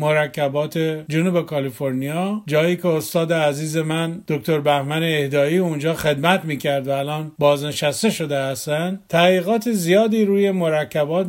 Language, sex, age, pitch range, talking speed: Persian, male, 50-69, 150-185 Hz, 120 wpm